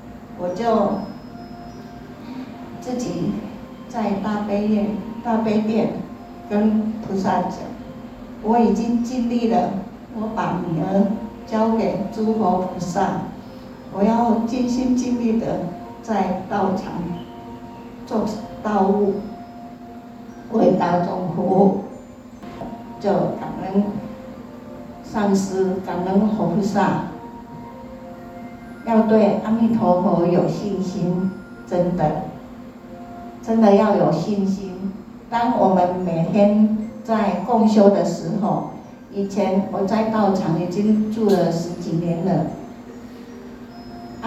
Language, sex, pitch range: Chinese, female, 190-235 Hz